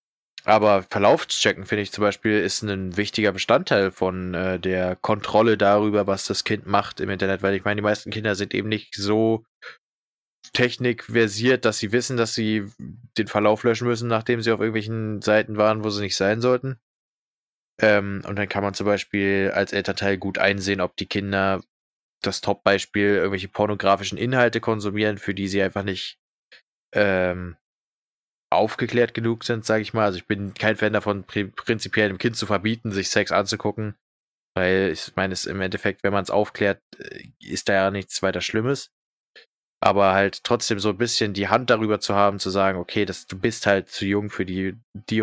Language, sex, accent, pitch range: German, male, German, 95-110 Hz